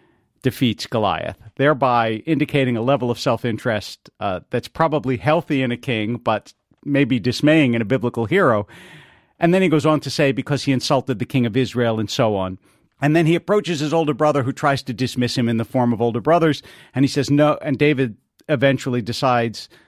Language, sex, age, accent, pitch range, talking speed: English, male, 50-69, American, 120-155 Hz, 195 wpm